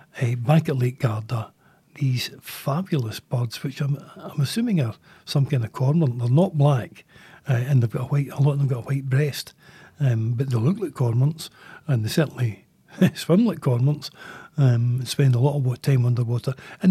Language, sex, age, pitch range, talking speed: English, male, 60-79, 125-150 Hz, 195 wpm